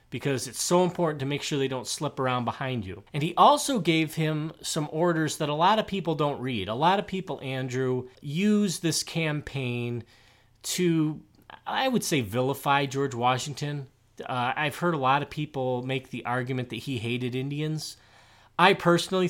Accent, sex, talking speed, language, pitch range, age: American, male, 180 wpm, English, 125-175 Hz, 30-49